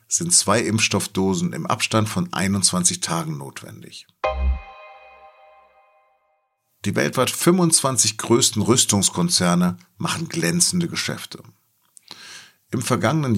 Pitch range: 90-140 Hz